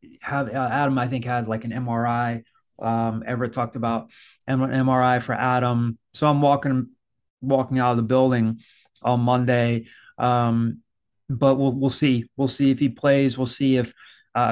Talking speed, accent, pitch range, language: 170 wpm, American, 120-135 Hz, English